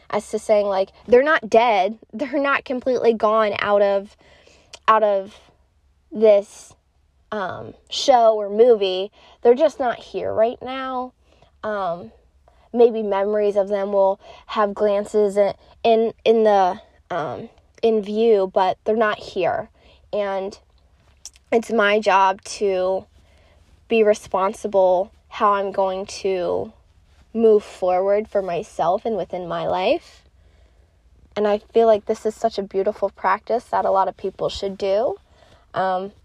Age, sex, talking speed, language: 20-39, female, 135 wpm, English